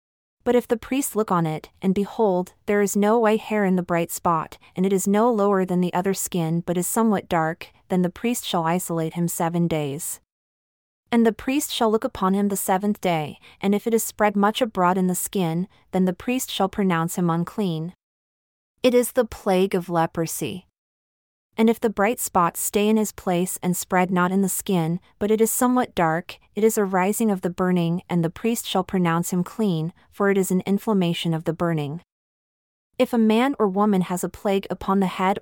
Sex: female